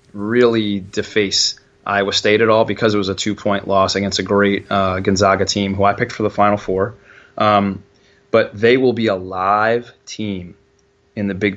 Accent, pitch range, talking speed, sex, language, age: American, 100-125 Hz, 185 wpm, male, English, 20-39